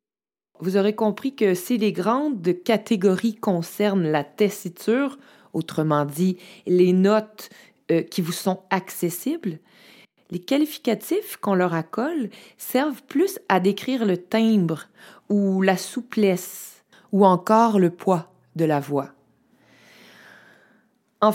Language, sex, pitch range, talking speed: French, female, 185-235 Hz, 120 wpm